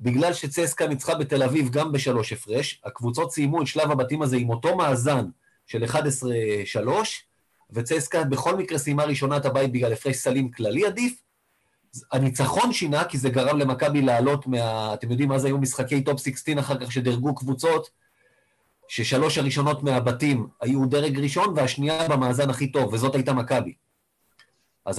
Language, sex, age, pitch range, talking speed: Hebrew, male, 30-49, 120-145 Hz, 155 wpm